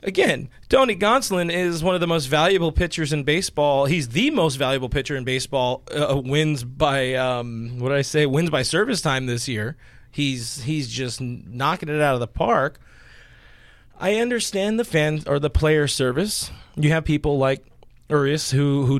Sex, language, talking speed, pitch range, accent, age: male, English, 185 wpm, 125-150 Hz, American, 30-49